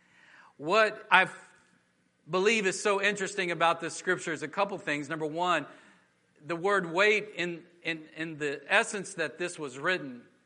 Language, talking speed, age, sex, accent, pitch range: English, 150 wpm, 40-59, male, American, 160-210 Hz